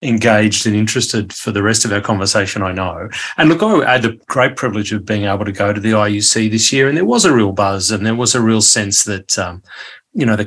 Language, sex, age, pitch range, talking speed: English, male, 30-49, 105-120 Hz, 260 wpm